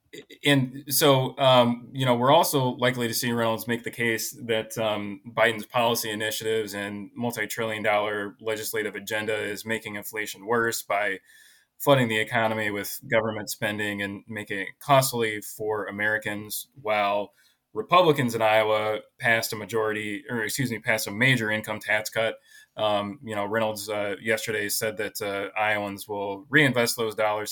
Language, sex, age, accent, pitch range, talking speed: English, male, 20-39, American, 100-120 Hz, 155 wpm